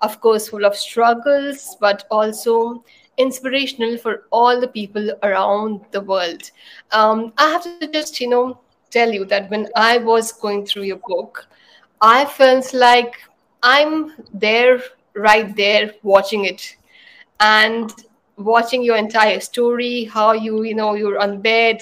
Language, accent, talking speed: English, Indian, 145 wpm